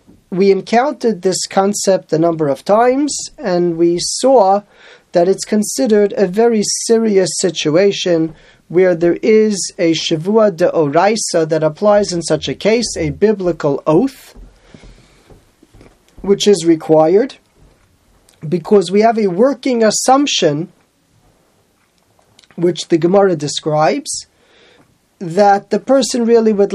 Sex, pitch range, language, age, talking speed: male, 165-215 Hz, English, 40-59, 115 wpm